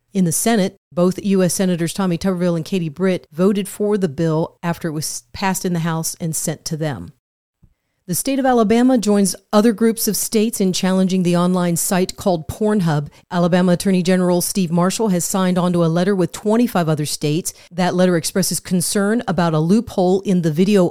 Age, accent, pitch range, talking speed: 40-59, American, 165-195 Hz, 190 wpm